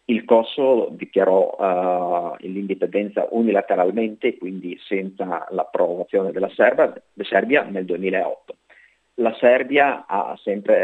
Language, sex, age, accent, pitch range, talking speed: Italian, male, 40-59, native, 95-130 Hz, 90 wpm